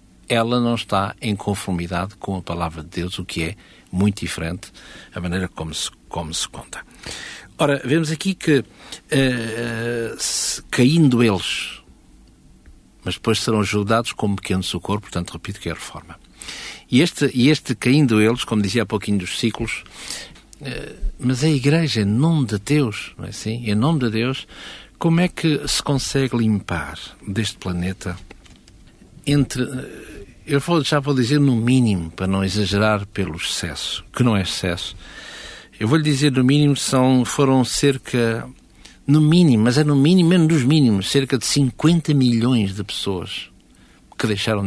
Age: 60-79